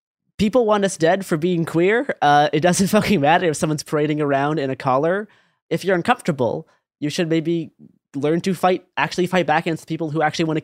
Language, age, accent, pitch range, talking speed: English, 20-39, American, 130-165 Hz, 215 wpm